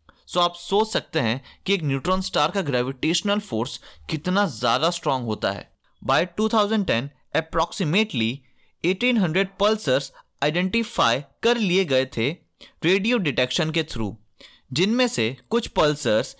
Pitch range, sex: 130-210 Hz, male